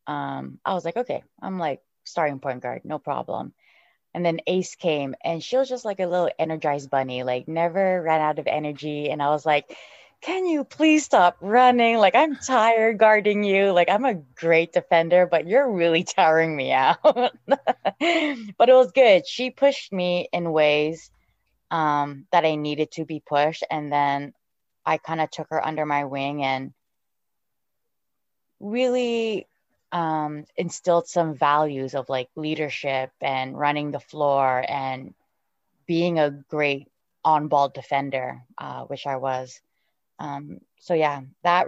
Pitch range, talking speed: 145-205 Hz, 155 wpm